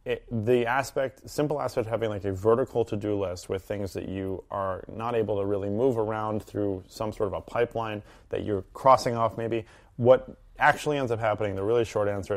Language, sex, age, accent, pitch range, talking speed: English, male, 30-49, American, 100-115 Hz, 210 wpm